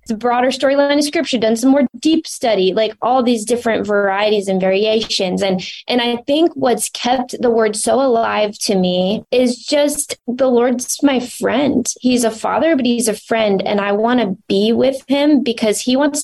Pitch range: 200-260 Hz